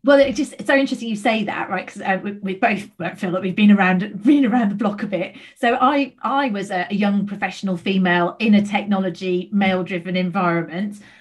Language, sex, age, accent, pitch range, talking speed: English, female, 30-49, British, 180-210 Hz, 225 wpm